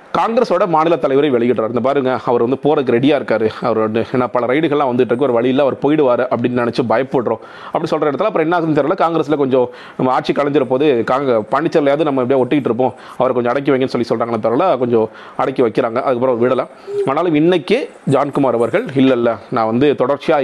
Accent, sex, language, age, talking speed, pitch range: native, male, Tamil, 40-59, 185 wpm, 120-140 Hz